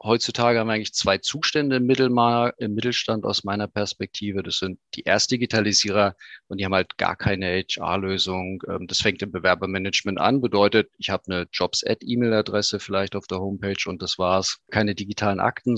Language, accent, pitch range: German, German, 100-125 Hz